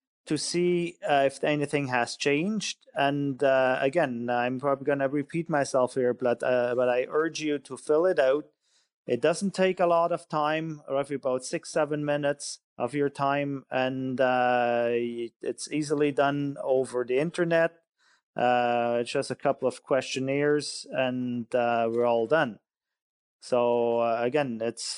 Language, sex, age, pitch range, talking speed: English, male, 30-49, 125-145 Hz, 160 wpm